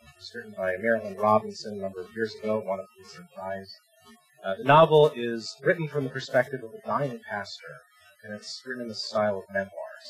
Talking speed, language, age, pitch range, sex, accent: 210 wpm, English, 30-49, 105-180 Hz, male, American